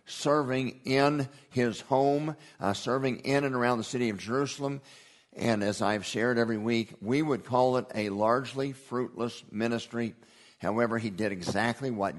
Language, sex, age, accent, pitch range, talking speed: English, male, 50-69, American, 110-135 Hz, 160 wpm